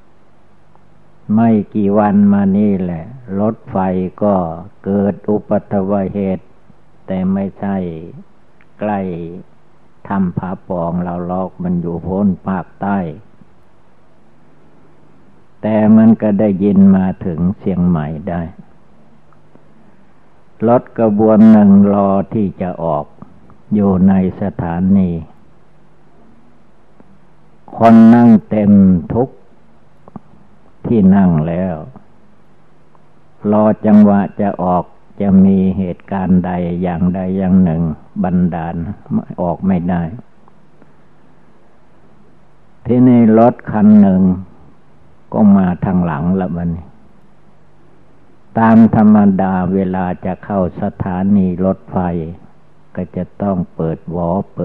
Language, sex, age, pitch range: Thai, male, 60-79, 90-105 Hz